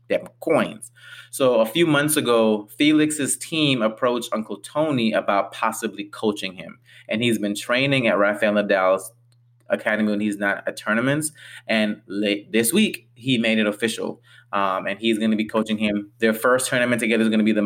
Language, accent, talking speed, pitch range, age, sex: English, American, 180 wpm, 105-120 Hz, 20-39, male